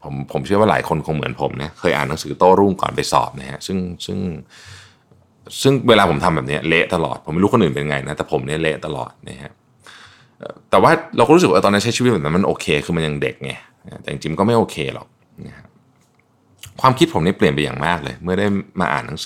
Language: Thai